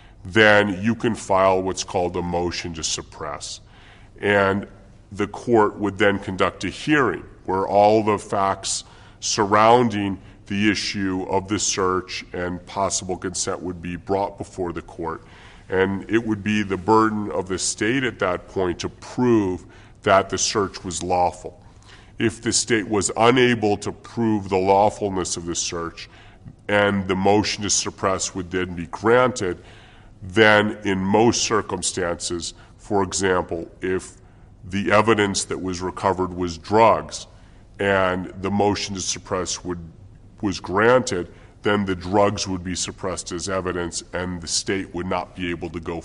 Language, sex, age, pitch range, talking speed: English, female, 40-59, 90-105 Hz, 150 wpm